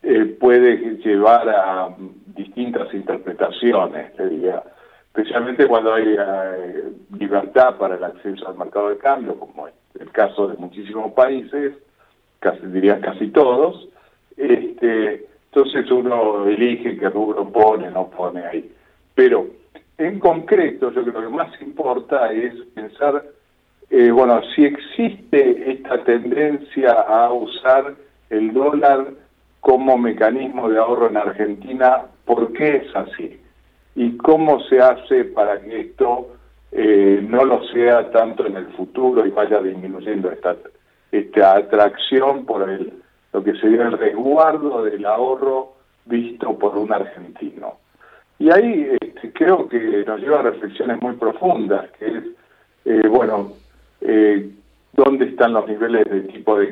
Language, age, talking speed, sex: Spanish, 50-69, 140 wpm, male